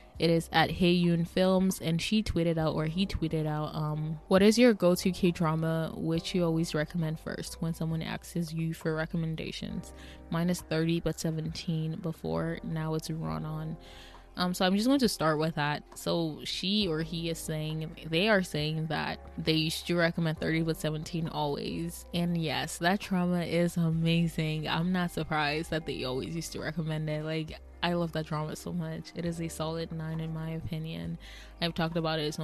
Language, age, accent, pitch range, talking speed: English, 20-39, American, 155-175 Hz, 190 wpm